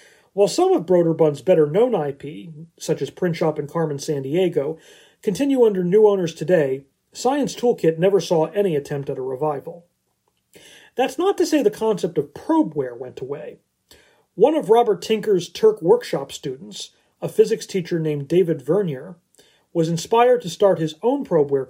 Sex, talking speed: male, 160 wpm